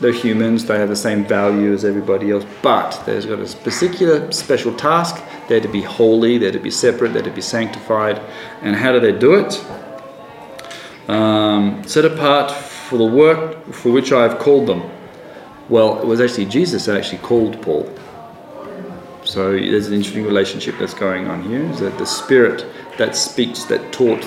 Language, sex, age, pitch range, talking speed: English, male, 40-59, 105-130 Hz, 180 wpm